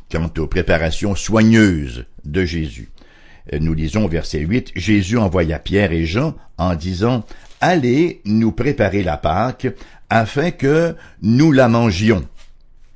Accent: French